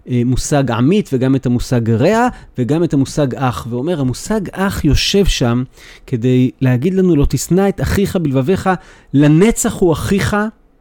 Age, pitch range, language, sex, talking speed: 40-59, 135-190 Hz, Hebrew, male, 145 wpm